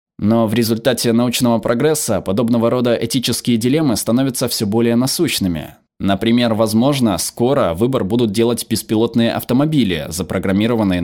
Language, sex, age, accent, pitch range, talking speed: Russian, male, 20-39, native, 95-120 Hz, 120 wpm